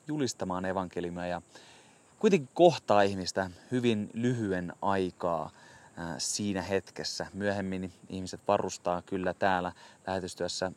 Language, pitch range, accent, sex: Finnish, 90-110 Hz, native, male